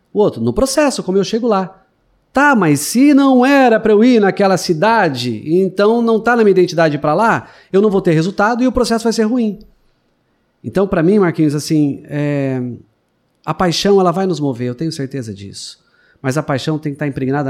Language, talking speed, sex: Portuguese, 205 wpm, male